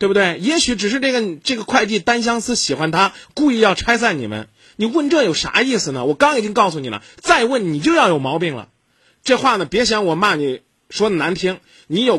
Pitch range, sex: 155-260 Hz, male